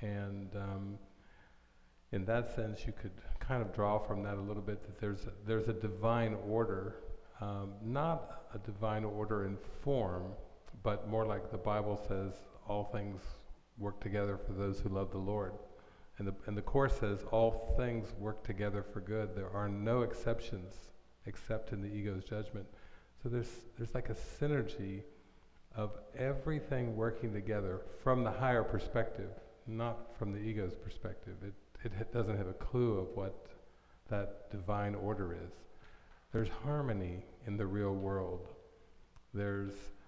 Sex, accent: male, American